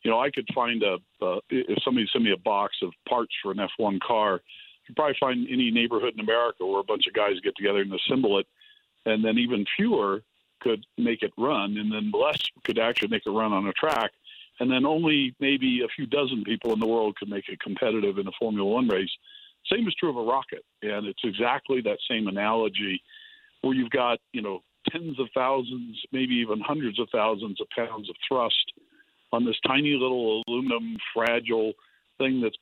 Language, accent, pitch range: English, American, 105-155 Hz